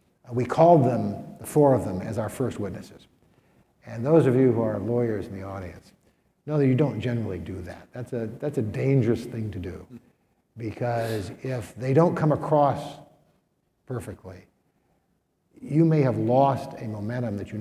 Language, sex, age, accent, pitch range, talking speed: English, male, 60-79, American, 105-135 Hz, 175 wpm